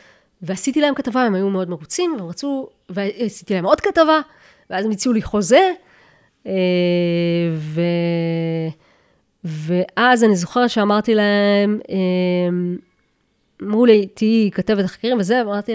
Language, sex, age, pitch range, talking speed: Hebrew, female, 20-39, 190-245 Hz, 120 wpm